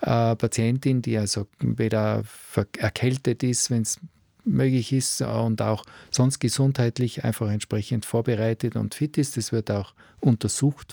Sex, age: male, 40-59